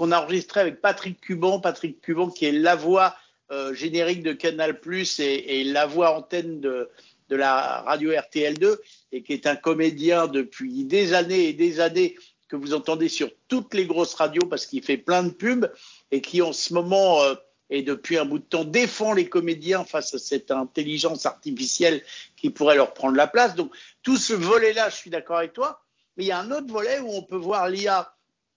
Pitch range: 165-220 Hz